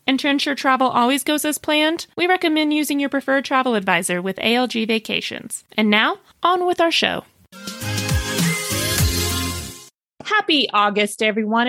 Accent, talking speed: American, 140 wpm